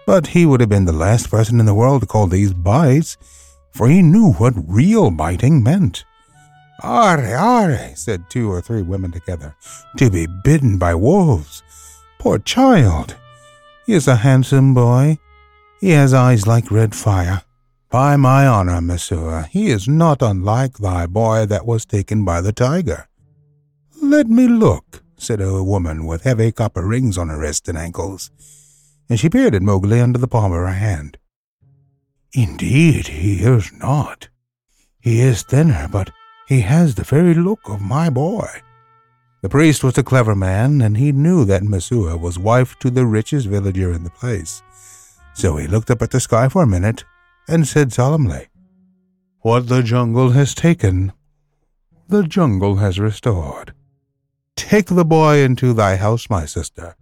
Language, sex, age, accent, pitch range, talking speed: English, male, 60-79, American, 95-145 Hz, 165 wpm